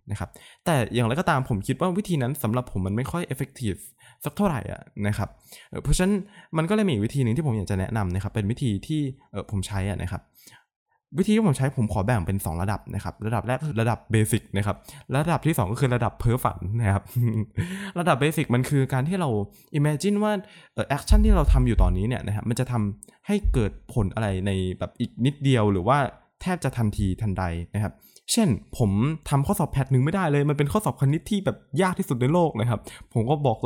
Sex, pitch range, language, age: male, 110-155 Hz, Thai, 20-39